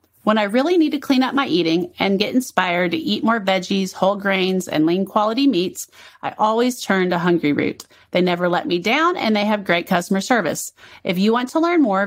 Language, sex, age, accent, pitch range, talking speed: English, female, 30-49, American, 185-265 Hz, 225 wpm